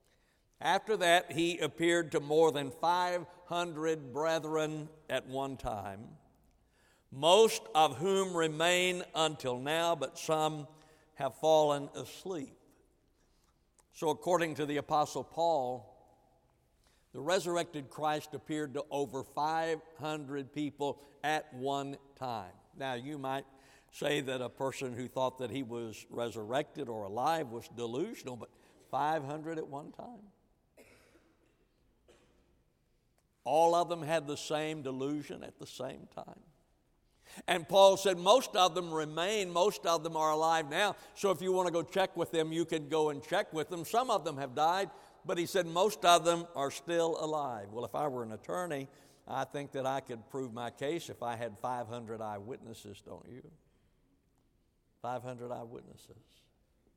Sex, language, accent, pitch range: male, English, American, 135-170 Hz